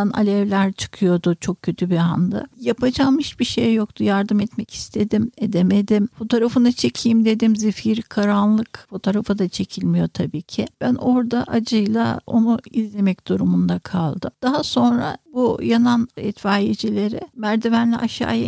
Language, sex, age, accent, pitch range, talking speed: Turkish, female, 60-79, native, 195-240 Hz, 125 wpm